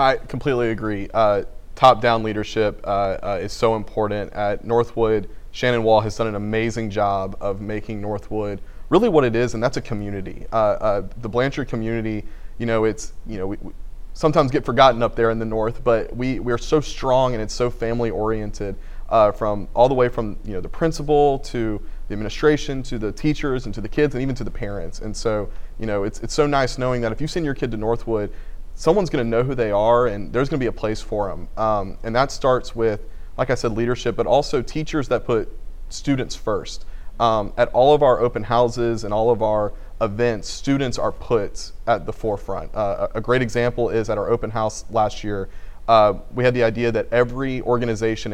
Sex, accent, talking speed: male, American, 215 wpm